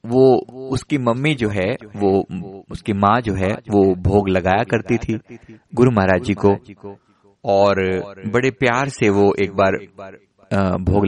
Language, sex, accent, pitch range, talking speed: Hindi, male, native, 100-130 Hz, 145 wpm